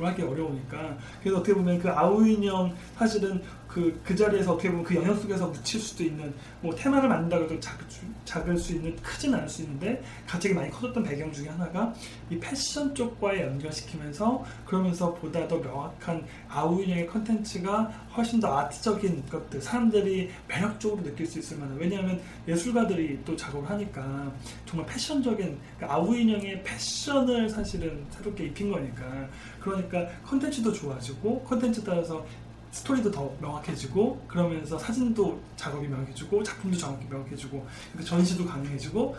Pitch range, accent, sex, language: 155-210 Hz, native, male, Korean